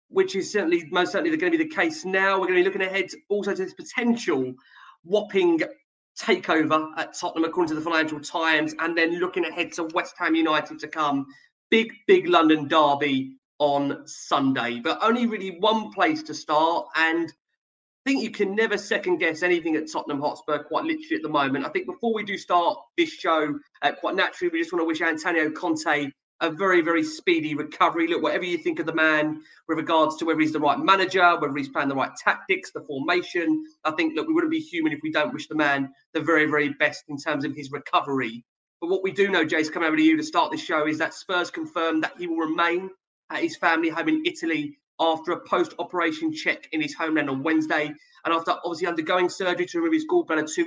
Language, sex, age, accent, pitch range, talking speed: English, male, 30-49, British, 155-235 Hz, 220 wpm